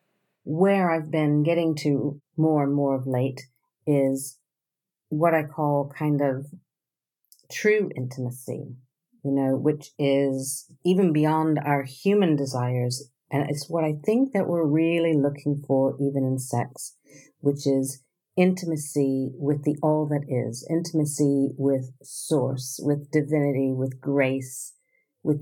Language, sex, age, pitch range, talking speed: English, female, 50-69, 135-155 Hz, 130 wpm